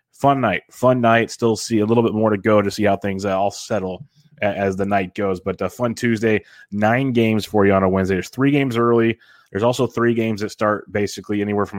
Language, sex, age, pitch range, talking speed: English, male, 30-49, 100-110 Hz, 235 wpm